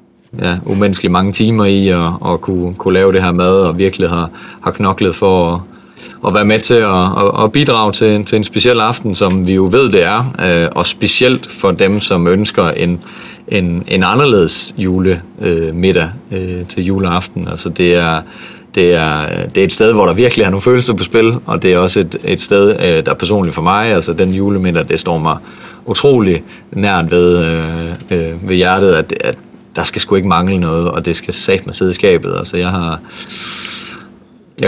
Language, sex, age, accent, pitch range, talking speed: Danish, male, 30-49, native, 90-105 Hz, 190 wpm